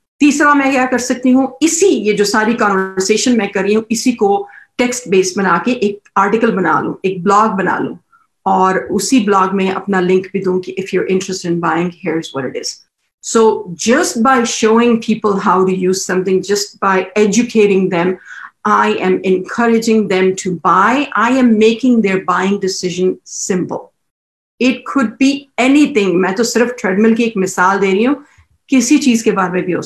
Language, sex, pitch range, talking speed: English, female, 190-235 Hz, 100 wpm